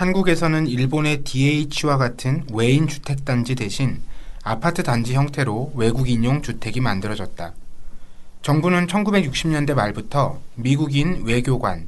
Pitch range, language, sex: 115-150 Hz, Korean, male